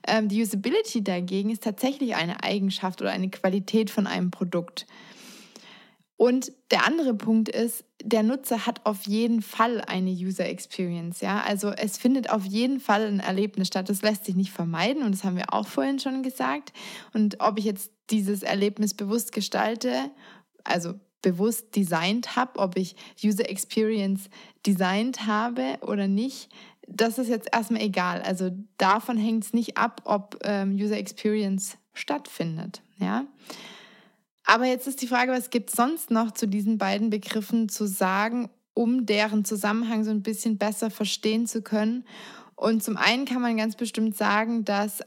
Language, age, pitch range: German, 20-39, 200-230 Hz